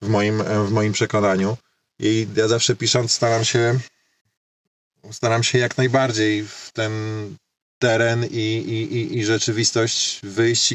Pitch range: 115-135 Hz